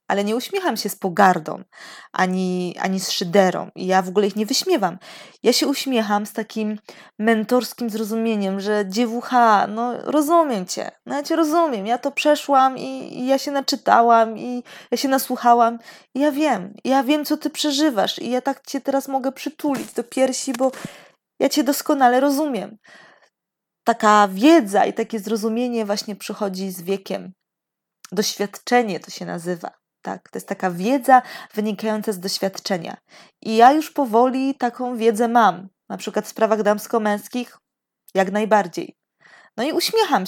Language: Polish